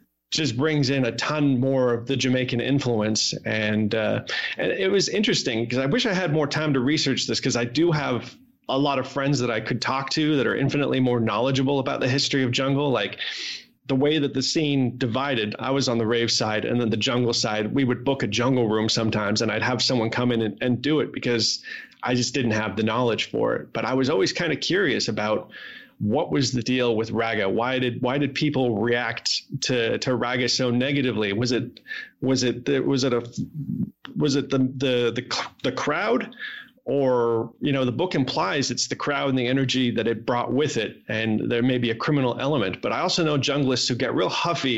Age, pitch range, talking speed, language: 30-49, 115-135 Hz, 220 wpm, English